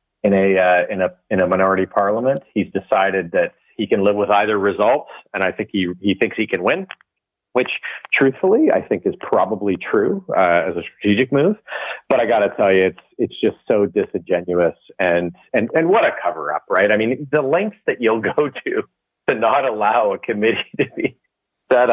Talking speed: 205 wpm